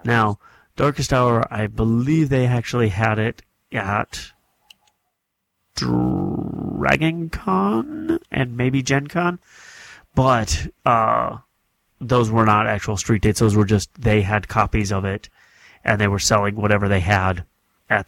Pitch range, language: 100-120 Hz, English